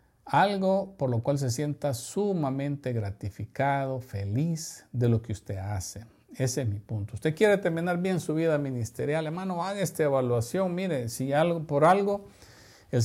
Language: Spanish